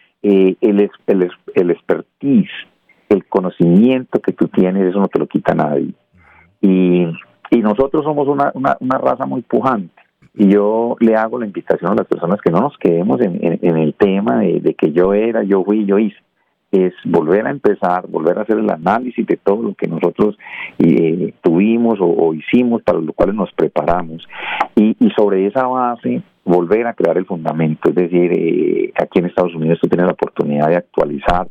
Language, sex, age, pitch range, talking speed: Spanish, male, 50-69, 90-115 Hz, 190 wpm